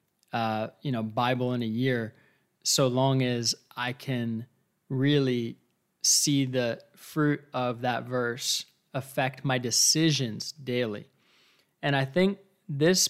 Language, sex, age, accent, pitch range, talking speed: English, male, 20-39, American, 125-150 Hz, 125 wpm